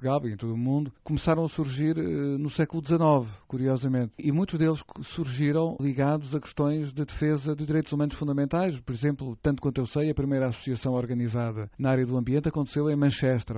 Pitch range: 130-155 Hz